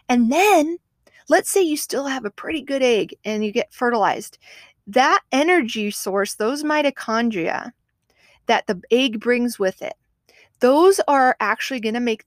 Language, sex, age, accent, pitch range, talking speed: English, female, 30-49, American, 210-280 Hz, 155 wpm